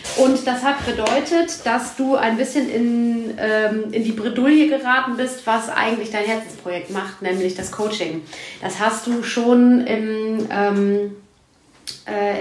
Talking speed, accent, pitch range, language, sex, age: 145 wpm, German, 215-255 Hz, German, female, 30-49